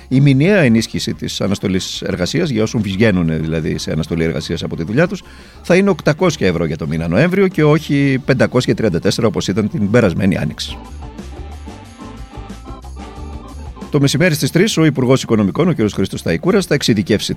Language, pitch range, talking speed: Greek, 85-140 Hz, 160 wpm